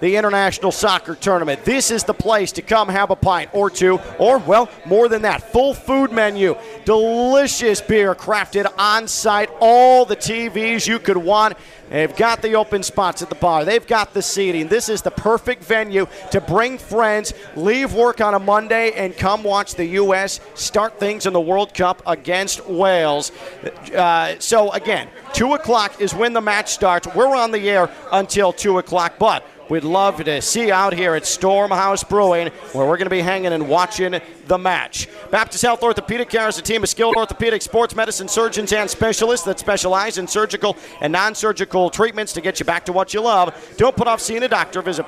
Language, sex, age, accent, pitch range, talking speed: English, male, 40-59, American, 180-220 Hz, 195 wpm